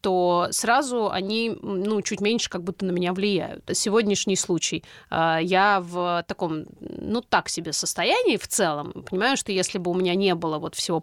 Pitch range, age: 175-210 Hz, 30-49